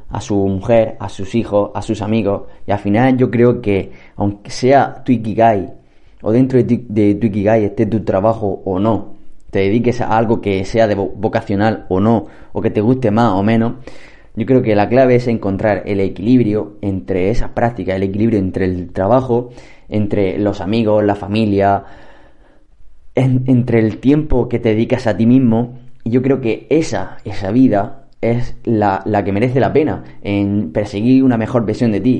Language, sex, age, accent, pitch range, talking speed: Spanish, male, 20-39, Spanish, 100-125 Hz, 190 wpm